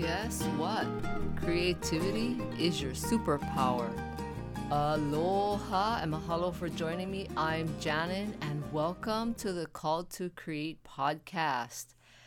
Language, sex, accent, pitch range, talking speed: English, female, American, 145-180 Hz, 110 wpm